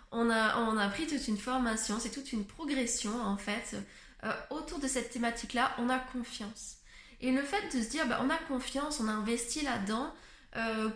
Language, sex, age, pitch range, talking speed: French, female, 20-39, 220-275 Hz, 205 wpm